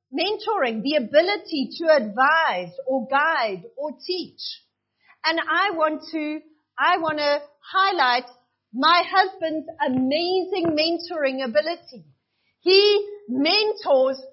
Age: 40-59